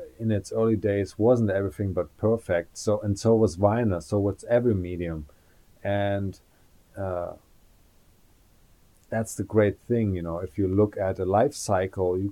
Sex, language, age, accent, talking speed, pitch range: male, English, 40-59, German, 160 wpm, 90-110 Hz